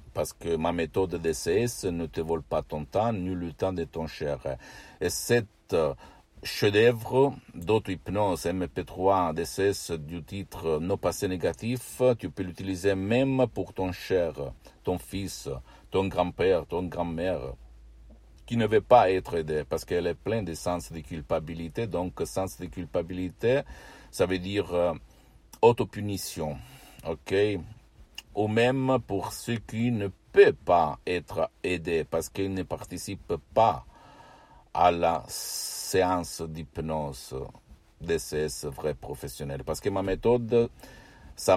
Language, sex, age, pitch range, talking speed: Italian, male, 60-79, 80-105 Hz, 140 wpm